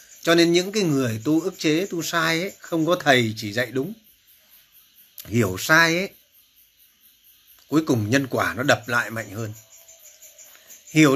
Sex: male